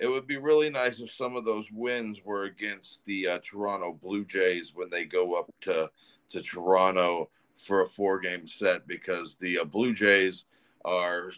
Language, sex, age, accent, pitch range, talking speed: English, male, 40-59, American, 95-125 Hz, 180 wpm